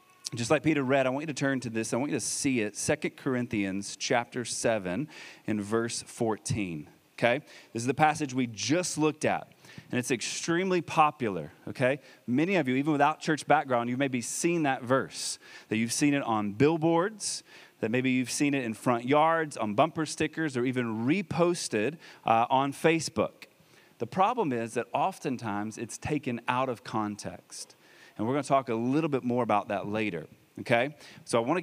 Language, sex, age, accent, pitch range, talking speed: English, male, 30-49, American, 115-155 Hz, 190 wpm